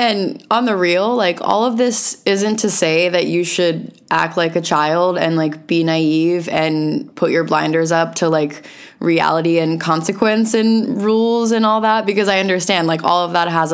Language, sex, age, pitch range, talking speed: English, female, 20-39, 165-220 Hz, 195 wpm